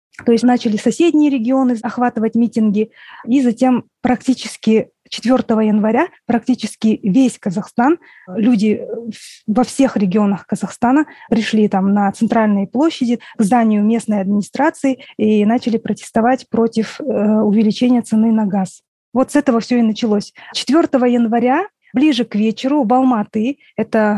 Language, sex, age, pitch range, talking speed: Russian, female, 20-39, 220-255 Hz, 125 wpm